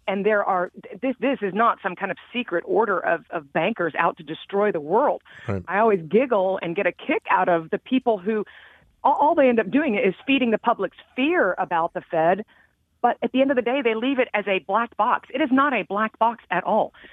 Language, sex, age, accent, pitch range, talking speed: English, female, 40-59, American, 180-245 Hz, 235 wpm